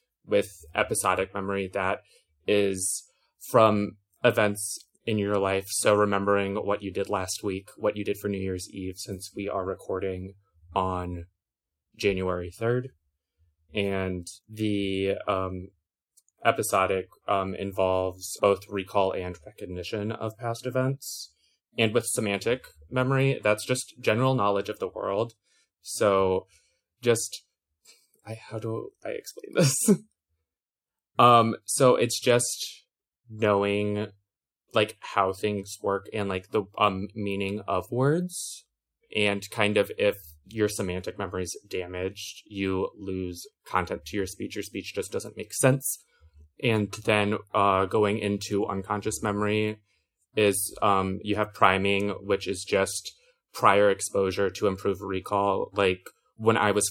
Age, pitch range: 20-39, 95-105 Hz